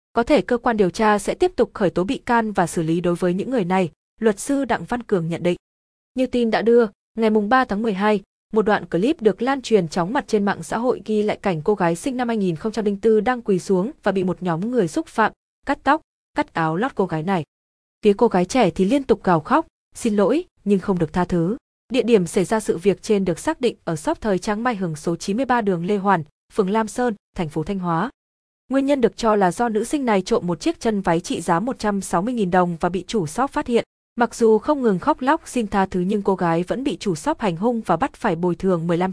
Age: 20-39